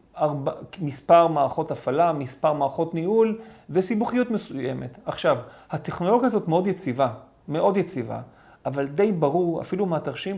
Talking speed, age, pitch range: 120 wpm, 40-59, 140-185 Hz